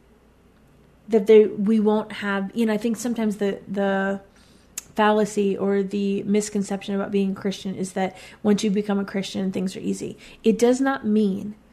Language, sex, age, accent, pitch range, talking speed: English, female, 30-49, American, 200-225 Hz, 170 wpm